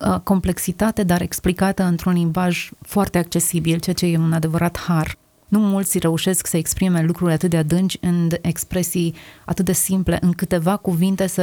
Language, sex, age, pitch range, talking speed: Romanian, female, 30-49, 160-185 Hz, 165 wpm